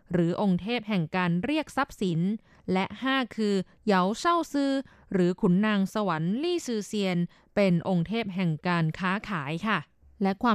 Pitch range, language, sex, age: 185-250 Hz, Thai, female, 20-39